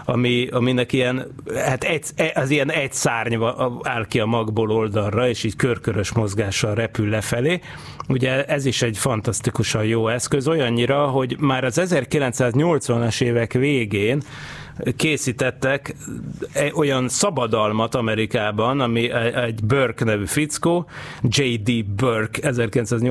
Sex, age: male, 30-49